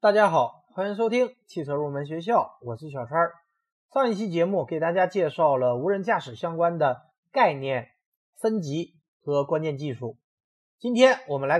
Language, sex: Chinese, male